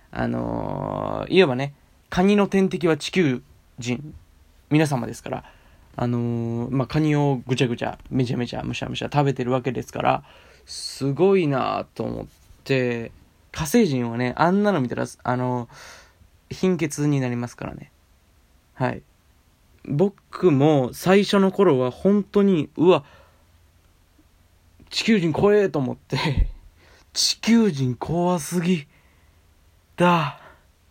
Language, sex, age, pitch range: Japanese, male, 20-39, 120-175 Hz